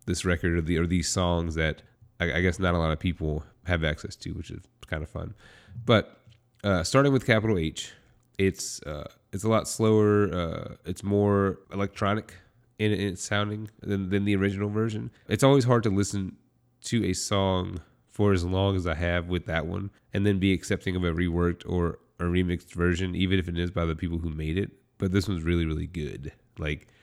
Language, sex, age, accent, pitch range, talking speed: English, male, 30-49, American, 85-105 Hz, 210 wpm